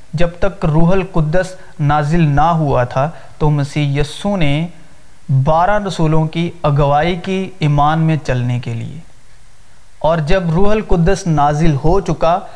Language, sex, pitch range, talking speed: Urdu, male, 145-185 Hz, 140 wpm